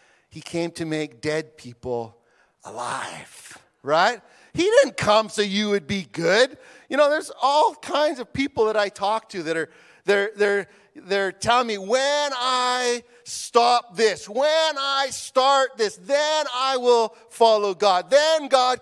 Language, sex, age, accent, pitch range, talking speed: English, male, 40-59, American, 195-255 Hz, 155 wpm